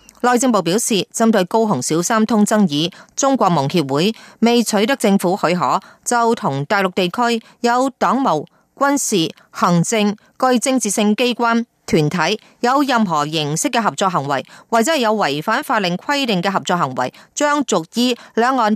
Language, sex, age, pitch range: Chinese, female, 30-49, 175-230 Hz